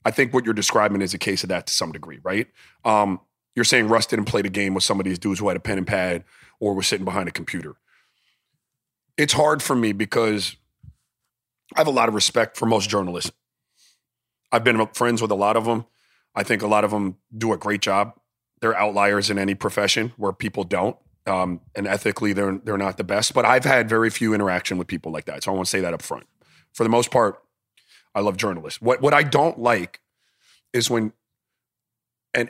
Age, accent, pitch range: 30-49, American, 100-120 Hz